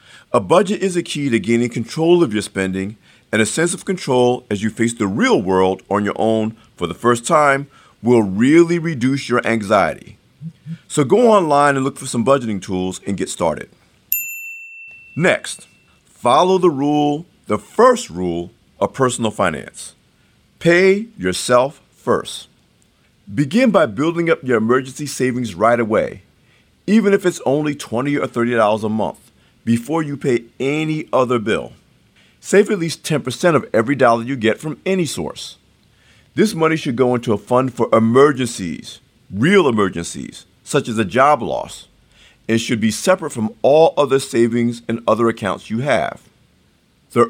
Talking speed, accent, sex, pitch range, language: 160 wpm, American, male, 115-160 Hz, English